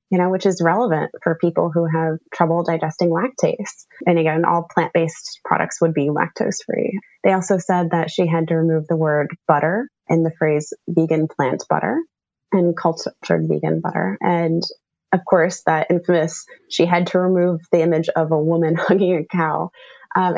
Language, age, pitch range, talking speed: English, 20-39, 160-185 Hz, 175 wpm